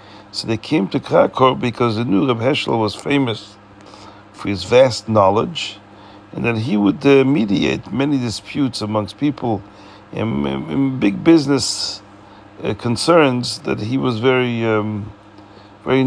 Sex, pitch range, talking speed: male, 100-125 Hz, 140 wpm